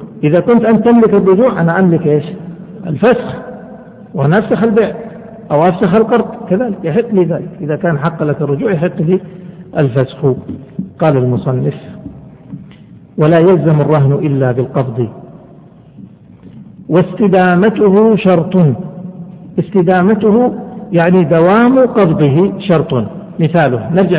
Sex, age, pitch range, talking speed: male, 60-79, 155-200 Hz, 100 wpm